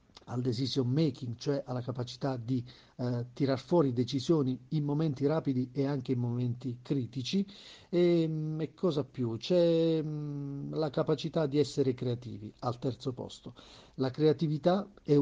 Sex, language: male, Italian